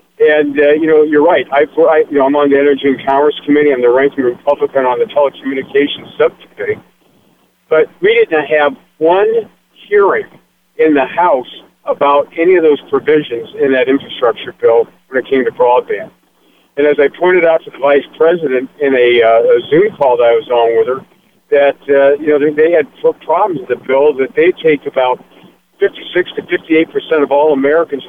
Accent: American